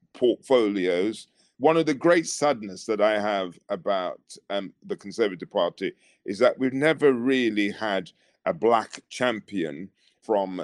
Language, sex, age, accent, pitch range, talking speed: English, male, 40-59, British, 100-115 Hz, 135 wpm